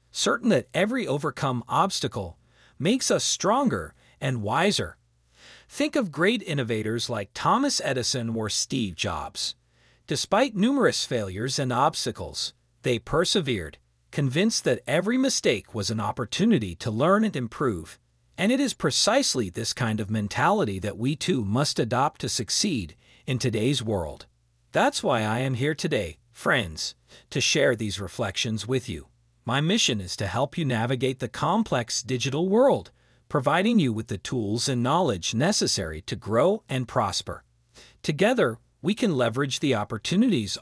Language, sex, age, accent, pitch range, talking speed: Italian, male, 40-59, American, 110-175 Hz, 145 wpm